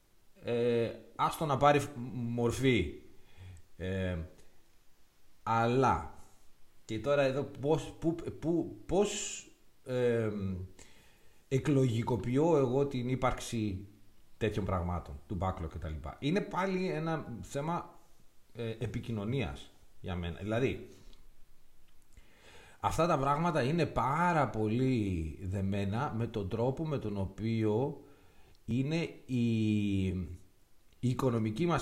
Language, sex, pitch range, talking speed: Greek, male, 95-135 Hz, 90 wpm